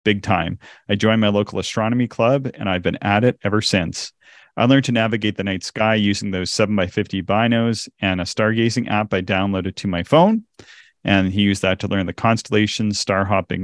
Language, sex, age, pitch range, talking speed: English, male, 40-59, 95-115 Hz, 205 wpm